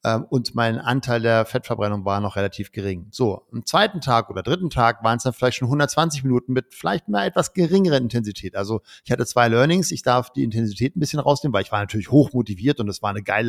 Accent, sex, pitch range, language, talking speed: German, male, 110-135 Hz, German, 230 wpm